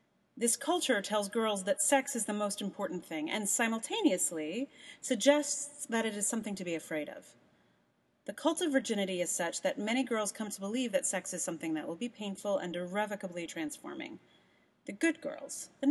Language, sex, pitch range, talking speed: English, female, 195-280 Hz, 185 wpm